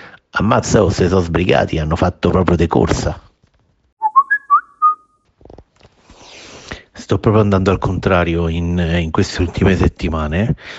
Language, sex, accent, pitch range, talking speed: Italian, male, native, 80-90 Hz, 110 wpm